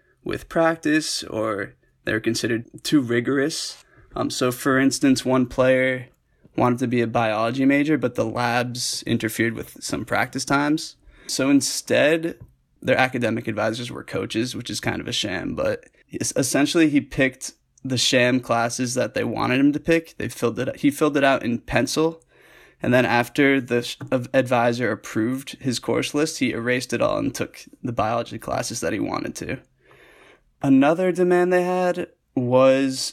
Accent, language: American, English